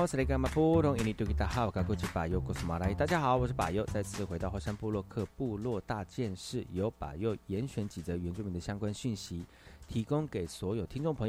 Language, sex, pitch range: Chinese, male, 90-120 Hz